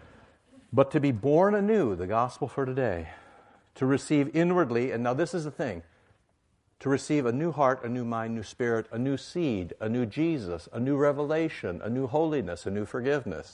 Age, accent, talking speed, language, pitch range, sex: 60-79, American, 190 wpm, English, 100-145 Hz, male